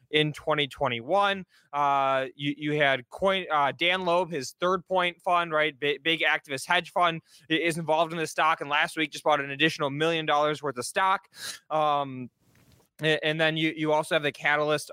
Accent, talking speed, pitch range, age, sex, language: American, 180 wpm, 145-180 Hz, 20-39, male, English